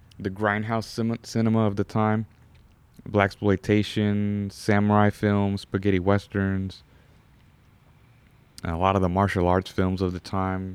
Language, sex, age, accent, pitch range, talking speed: English, male, 30-49, American, 90-110 Hz, 125 wpm